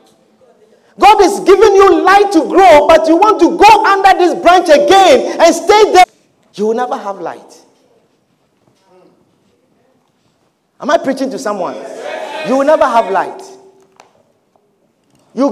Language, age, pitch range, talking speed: English, 50-69, 290-390 Hz, 135 wpm